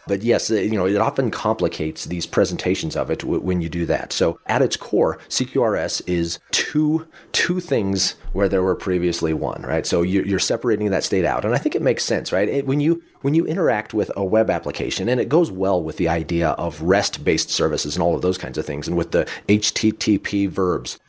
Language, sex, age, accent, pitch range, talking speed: English, male, 30-49, American, 85-105 Hz, 215 wpm